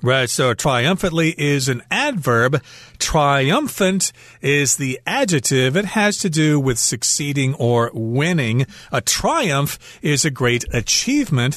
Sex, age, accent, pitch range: male, 40-59, American, 120-150 Hz